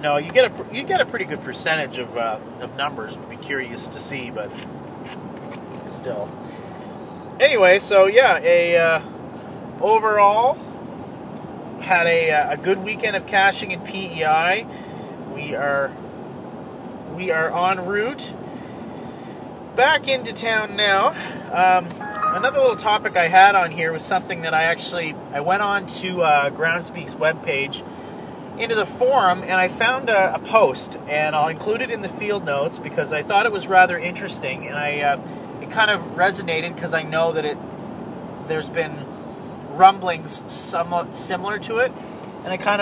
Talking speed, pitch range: 155 wpm, 160-205 Hz